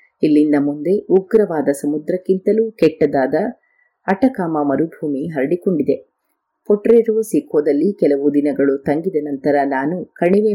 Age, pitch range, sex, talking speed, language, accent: 30-49, 140-195 Hz, female, 90 wpm, Kannada, native